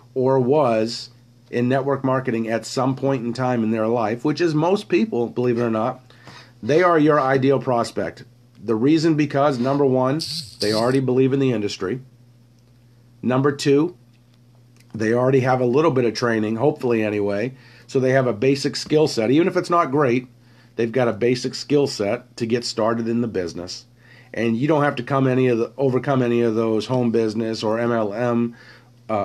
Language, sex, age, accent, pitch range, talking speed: English, male, 40-59, American, 115-130 Hz, 185 wpm